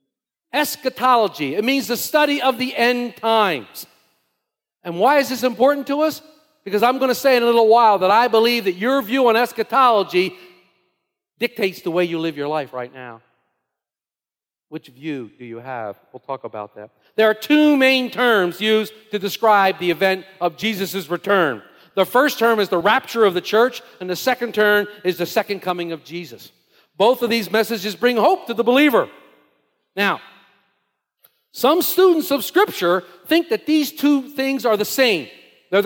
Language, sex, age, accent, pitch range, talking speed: English, male, 50-69, American, 185-265 Hz, 175 wpm